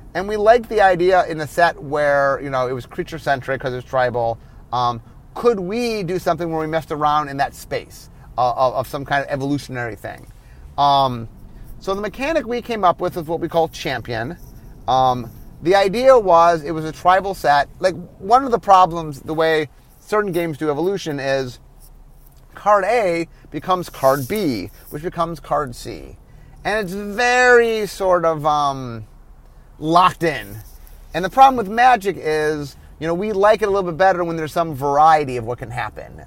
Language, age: English, 30-49